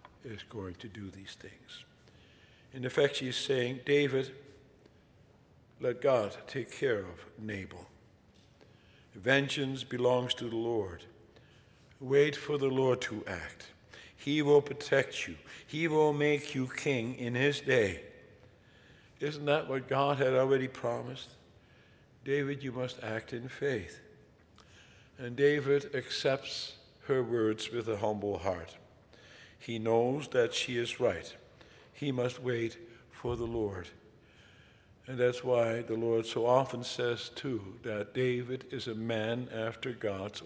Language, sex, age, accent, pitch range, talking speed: English, male, 60-79, American, 115-135 Hz, 135 wpm